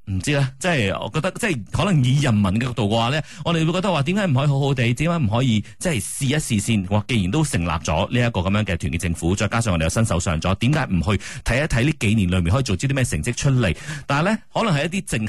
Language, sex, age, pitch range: Chinese, male, 30-49, 95-145 Hz